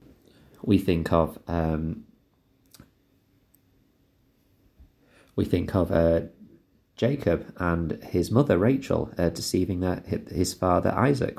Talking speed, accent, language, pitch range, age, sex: 100 wpm, British, English, 80-100 Hz, 30-49, male